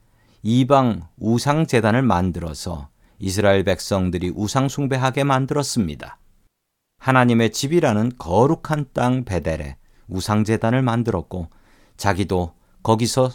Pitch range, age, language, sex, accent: 95-125 Hz, 40-59, Korean, male, native